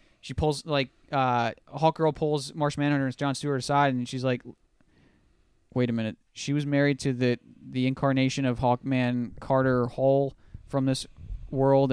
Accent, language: American, English